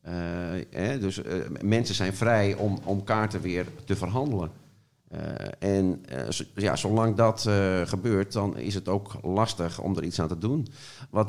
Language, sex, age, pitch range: Dutch, male, 50-69, 85-105 Hz